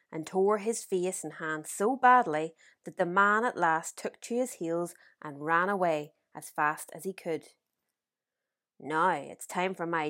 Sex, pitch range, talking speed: female, 160-190 Hz, 180 wpm